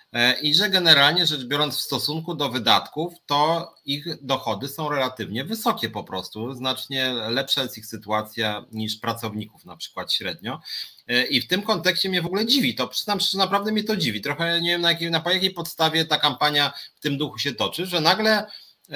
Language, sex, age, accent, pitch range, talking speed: Polish, male, 30-49, native, 120-180 Hz, 185 wpm